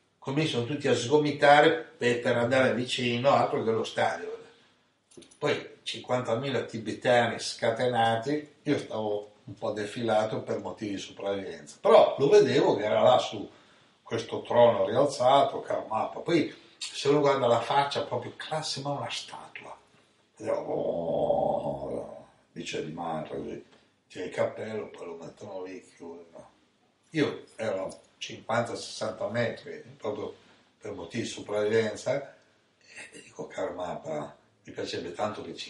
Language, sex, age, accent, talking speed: Italian, male, 60-79, native, 140 wpm